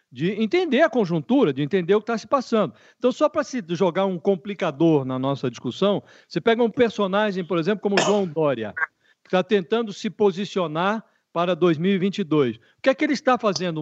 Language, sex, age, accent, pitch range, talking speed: Portuguese, male, 60-79, Brazilian, 160-210 Hz, 195 wpm